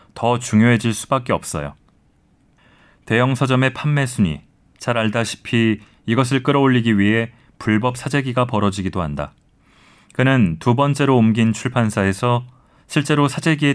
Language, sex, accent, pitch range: Korean, male, native, 105-130 Hz